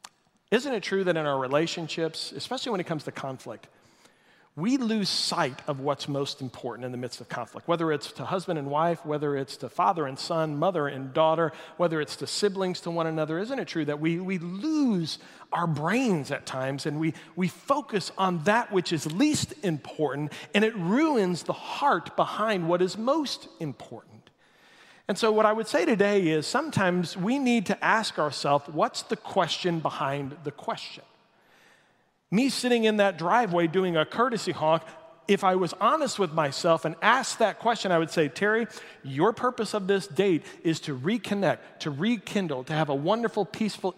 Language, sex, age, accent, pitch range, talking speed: English, male, 40-59, American, 155-205 Hz, 185 wpm